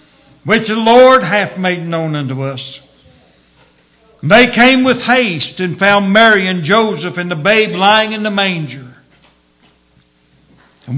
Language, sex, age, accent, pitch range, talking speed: English, male, 60-79, American, 155-215 Hz, 135 wpm